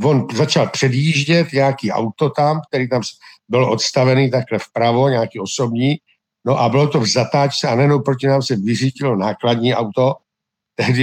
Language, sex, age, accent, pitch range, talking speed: Czech, male, 60-79, native, 120-155 Hz, 160 wpm